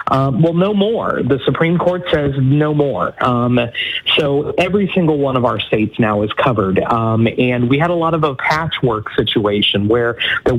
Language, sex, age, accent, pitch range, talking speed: English, male, 30-49, American, 125-165 Hz, 185 wpm